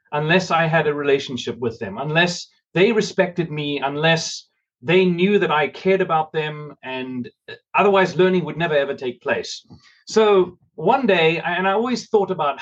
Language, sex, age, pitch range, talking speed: English, male, 30-49, 155-220 Hz, 165 wpm